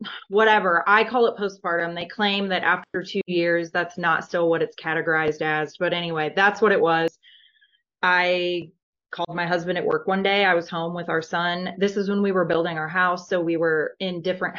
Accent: American